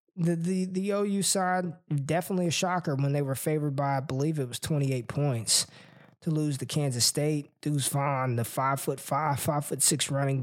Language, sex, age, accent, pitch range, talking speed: English, male, 20-39, American, 135-155 Hz, 195 wpm